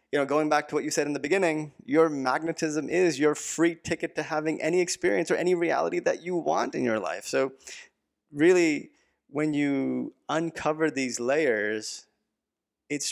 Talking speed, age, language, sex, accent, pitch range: 165 wpm, 30-49, English, male, American, 115-155 Hz